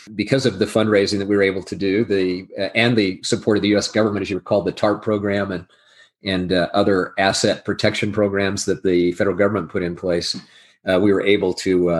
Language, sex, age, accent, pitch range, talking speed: English, male, 40-59, American, 100-120 Hz, 225 wpm